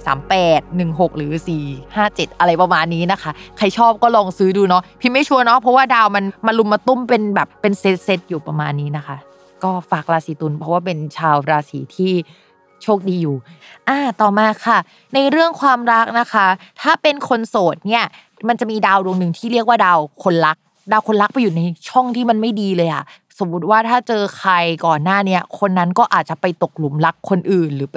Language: Thai